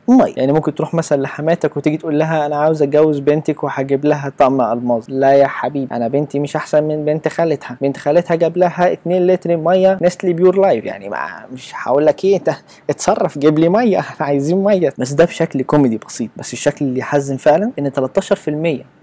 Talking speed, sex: 200 wpm, male